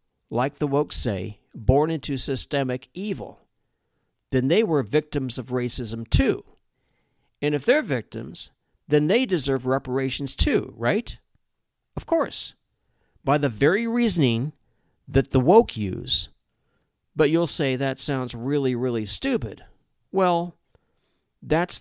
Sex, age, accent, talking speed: male, 50-69, American, 125 wpm